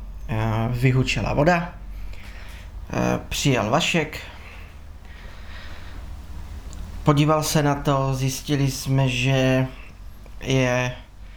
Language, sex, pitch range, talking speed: Czech, male, 95-145 Hz, 65 wpm